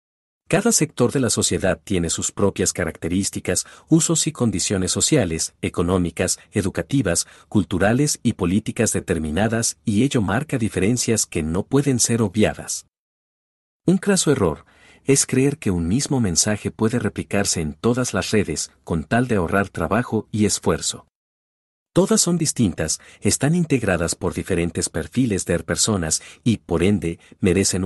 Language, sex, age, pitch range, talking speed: Spanish, male, 50-69, 85-120 Hz, 140 wpm